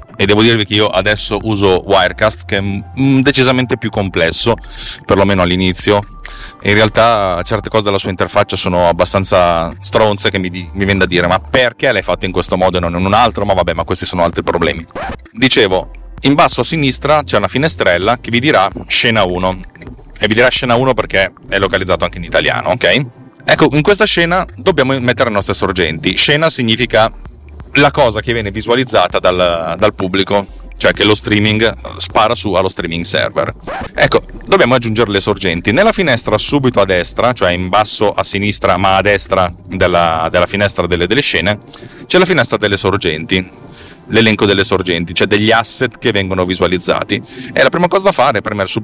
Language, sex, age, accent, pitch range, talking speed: Italian, male, 30-49, native, 95-120 Hz, 185 wpm